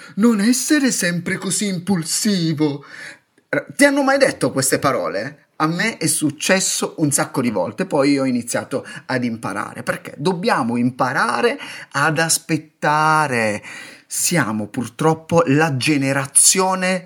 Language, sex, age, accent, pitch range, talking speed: Italian, male, 30-49, native, 135-220 Hz, 115 wpm